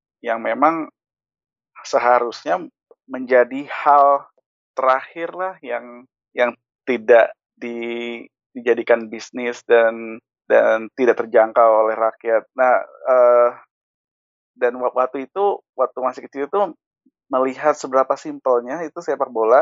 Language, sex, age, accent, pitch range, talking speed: Indonesian, male, 20-39, native, 115-140 Hz, 105 wpm